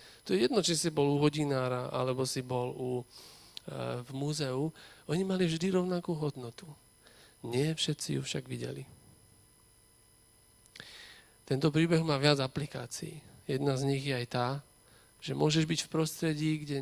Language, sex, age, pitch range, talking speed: Slovak, male, 40-59, 120-145 Hz, 150 wpm